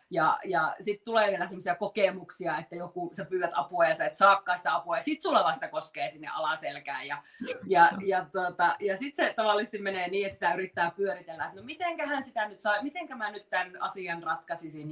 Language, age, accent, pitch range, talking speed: Finnish, 30-49, native, 190-285 Hz, 195 wpm